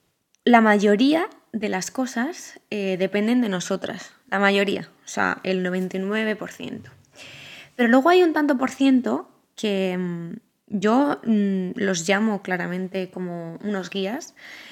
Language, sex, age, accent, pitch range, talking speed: Spanish, female, 20-39, Spanish, 190-235 Hz, 120 wpm